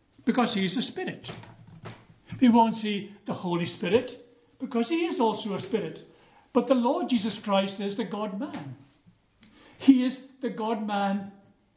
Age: 60-79